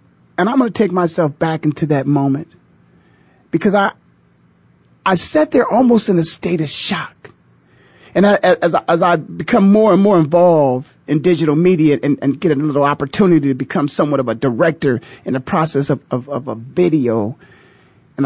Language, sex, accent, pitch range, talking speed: English, male, American, 140-195 Hz, 185 wpm